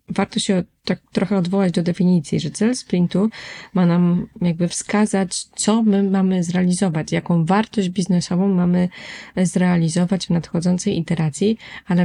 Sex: female